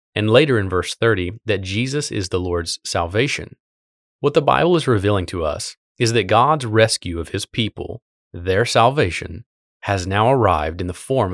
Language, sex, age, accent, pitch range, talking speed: English, male, 30-49, American, 90-115 Hz, 175 wpm